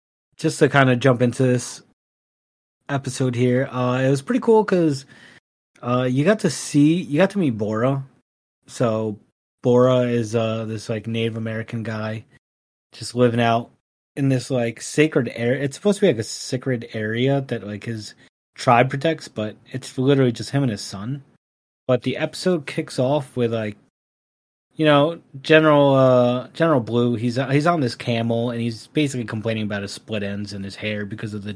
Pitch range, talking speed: 110-140 Hz, 185 wpm